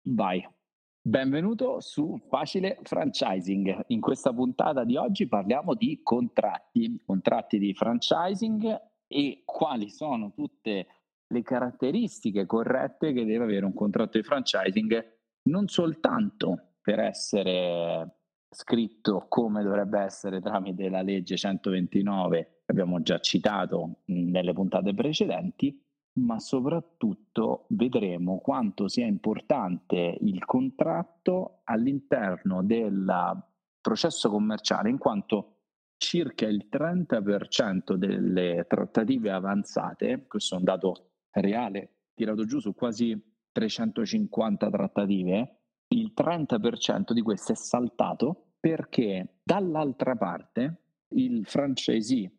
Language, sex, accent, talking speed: Italian, male, native, 105 wpm